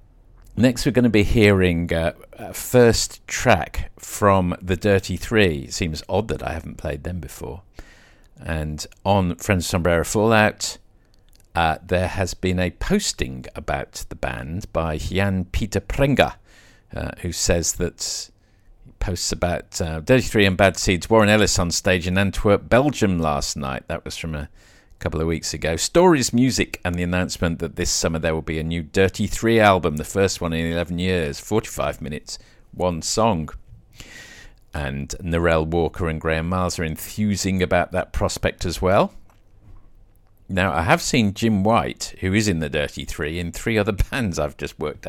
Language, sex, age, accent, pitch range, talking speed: English, male, 50-69, British, 85-105 Hz, 175 wpm